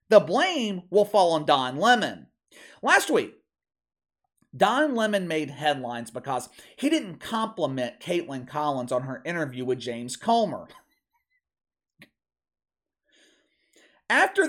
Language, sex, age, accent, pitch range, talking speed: English, male, 40-59, American, 135-220 Hz, 110 wpm